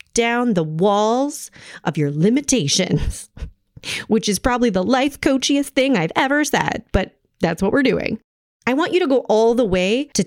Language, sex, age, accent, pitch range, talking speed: English, female, 30-49, American, 185-250 Hz, 175 wpm